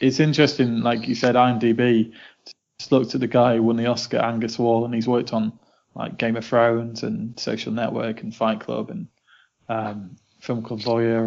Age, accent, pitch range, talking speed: 20-39, British, 115-125 Hz, 195 wpm